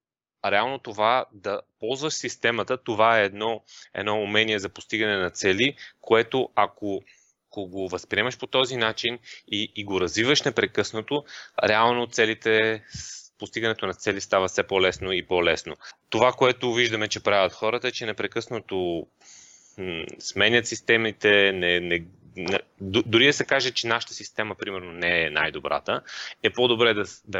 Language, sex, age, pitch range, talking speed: Bulgarian, male, 30-49, 100-120 Hz, 145 wpm